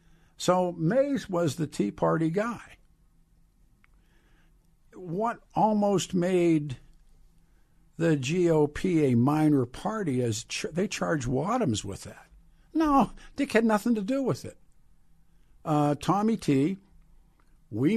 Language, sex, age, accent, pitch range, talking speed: English, male, 60-79, American, 140-180 Hz, 110 wpm